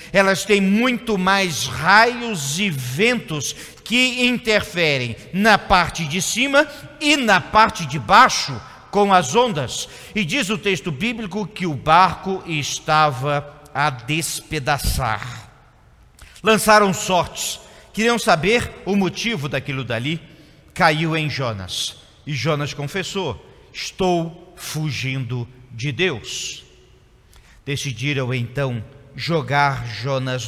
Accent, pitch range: Brazilian, 135-190 Hz